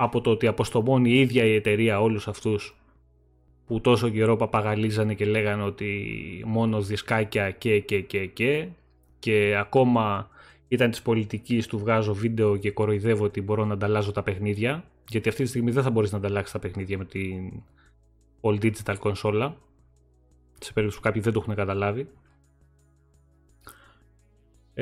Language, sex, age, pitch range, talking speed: Greek, male, 20-39, 105-145 Hz, 155 wpm